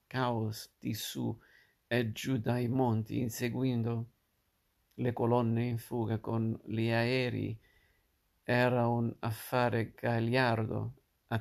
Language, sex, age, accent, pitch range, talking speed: Italian, male, 50-69, native, 115-130 Hz, 105 wpm